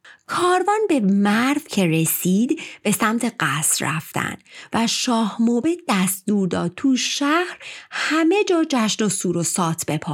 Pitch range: 180-260 Hz